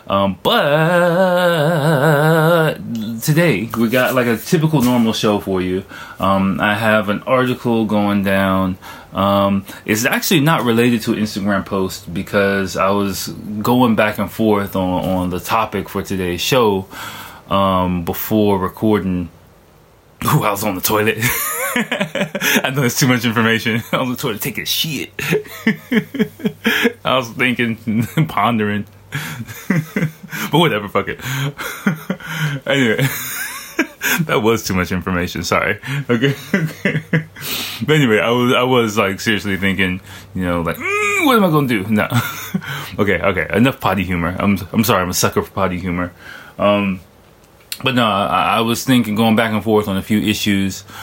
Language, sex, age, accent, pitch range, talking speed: English, male, 20-39, American, 100-135 Hz, 150 wpm